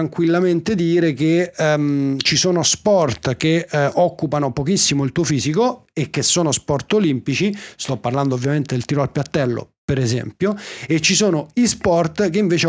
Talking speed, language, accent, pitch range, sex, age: 165 wpm, Italian, native, 140-195 Hz, male, 30-49